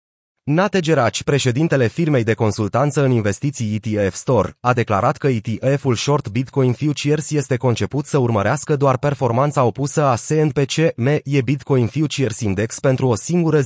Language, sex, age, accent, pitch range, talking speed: Romanian, male, 30-49, native, 115-150 Hz, 145 wpm